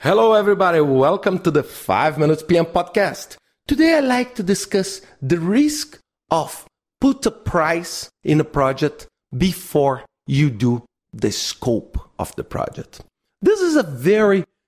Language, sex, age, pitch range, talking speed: English, male, 50-69, 135-200 Hz, 145 wpm